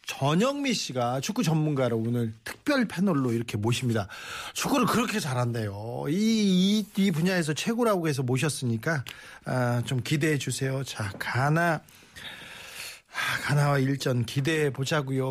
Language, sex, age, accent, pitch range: Korean, male, 40-59, native, 135-190 Hz